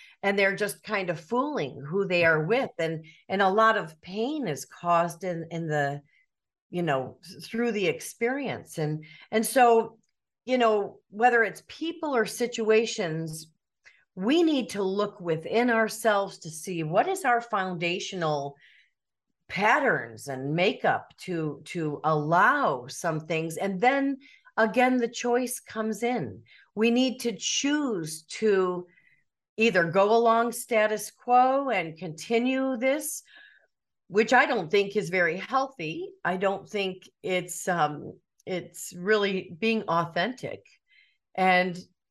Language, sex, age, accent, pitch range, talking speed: English, female, 40-59, American, 170-235 Hz, 135 wpm